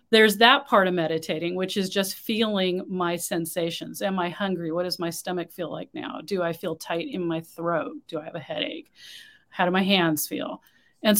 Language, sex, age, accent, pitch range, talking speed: English, female, 40-59, American, 180-225 Hz, 210 wpm